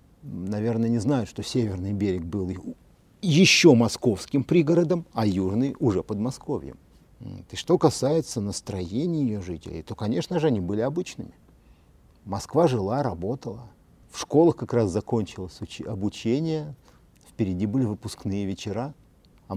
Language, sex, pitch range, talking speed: Russian, male, 95-130 Hz, 120 wpm